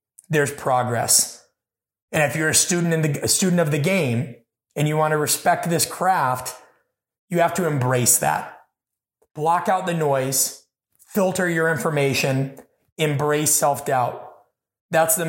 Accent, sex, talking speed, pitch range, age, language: American, male, 145 wpm, 145-165 Hz, 30-49, English